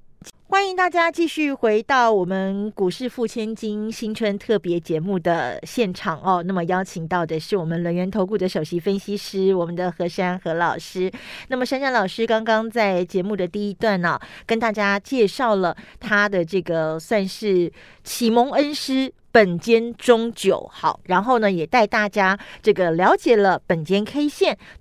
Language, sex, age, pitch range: Chinese, female, 40-59, 180-235 Hz